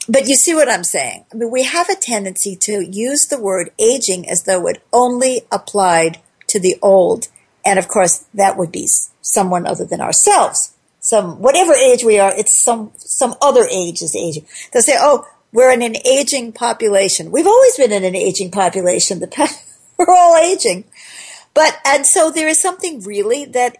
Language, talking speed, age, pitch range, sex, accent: English, 185 wpm, 50-69, 195-275 Hz, female, American